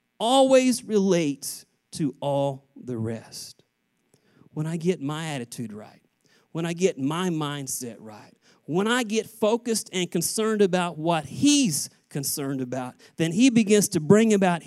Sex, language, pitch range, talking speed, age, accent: male, English, 135-185 Hz, 145 wpm, 40-59, American